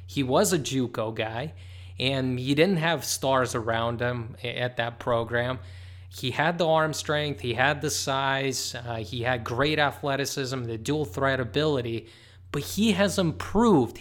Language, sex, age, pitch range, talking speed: English, male, 20-39, 120-160 Hz, 160 wpm